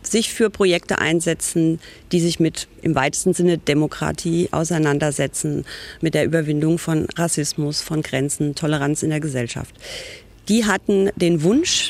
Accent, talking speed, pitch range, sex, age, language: German, 135 wpm, 160-200 Hz, female, 40-59, German